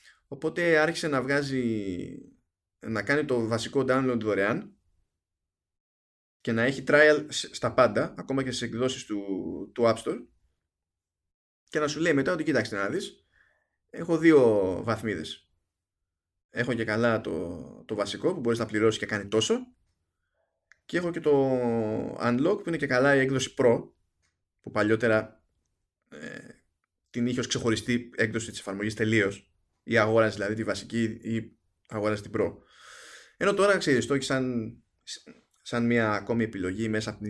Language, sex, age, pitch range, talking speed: Greek, male, 20-39, 100-135 Hz, 150 wpm